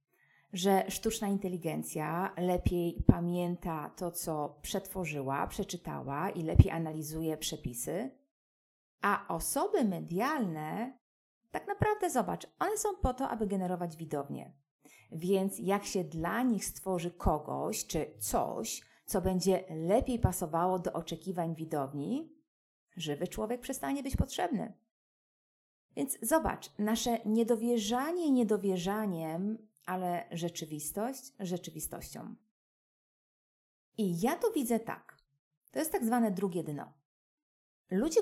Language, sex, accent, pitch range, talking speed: Polish, female, native, 160-225 Hz, 105 wpm